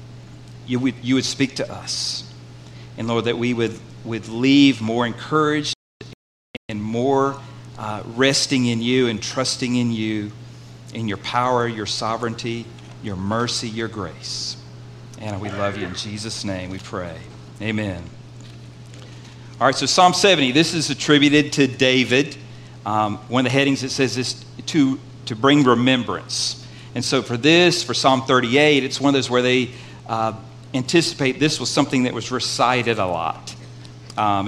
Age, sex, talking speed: 50-69, male, 160 wpm